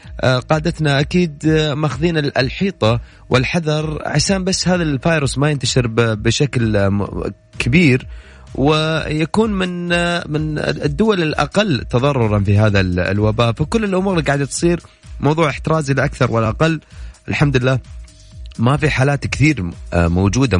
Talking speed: 110 wpm